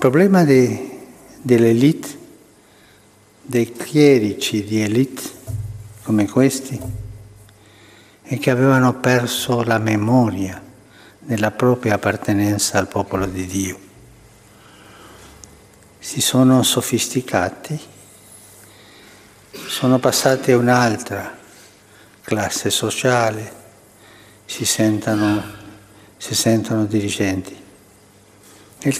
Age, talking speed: 60-79, 75 wpm